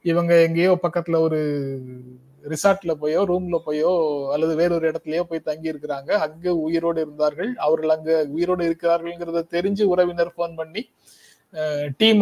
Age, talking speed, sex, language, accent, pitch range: 30-49, 130 wpm, male, Tamil, native, 150-185 Hz